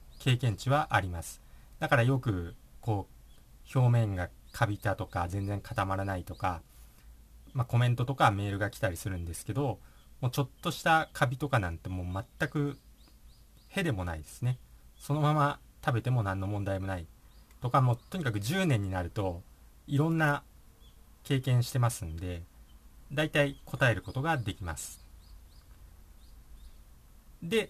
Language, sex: Japanese, male